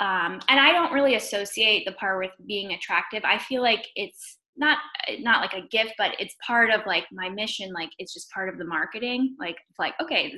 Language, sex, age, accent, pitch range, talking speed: English, female, 10-29, American, 190-250 Hz, 215 wpm